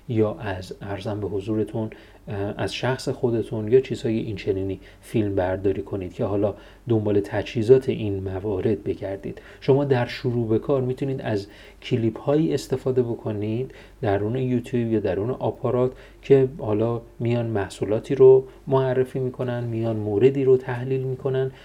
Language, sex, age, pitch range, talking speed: Persian, male, 40-59, 105-130 Hz, 140 wpm